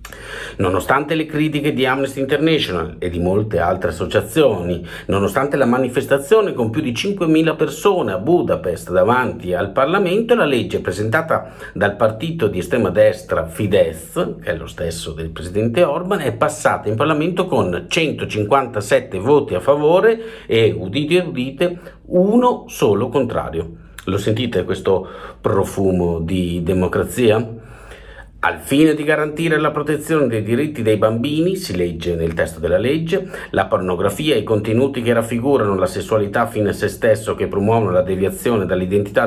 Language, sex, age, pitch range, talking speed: Italian, male, 50-69, 95-155 Hz, 145 wpm